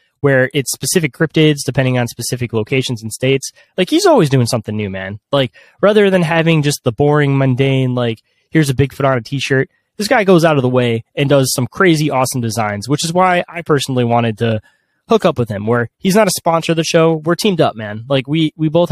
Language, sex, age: English, male, 20-39